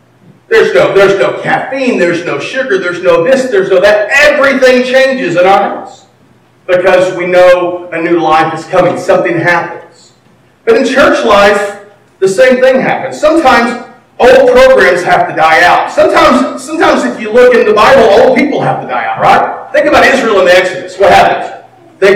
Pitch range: 175-245 Hz